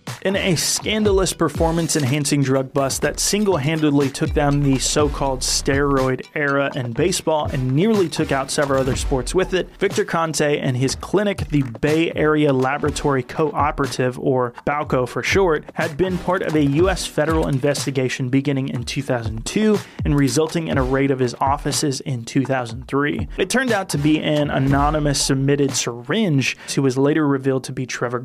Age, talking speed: 30-49, 160 wpm